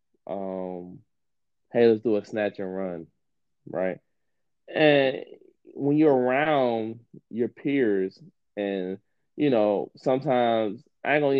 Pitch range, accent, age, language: 100-120 Hz, American, 20-39, English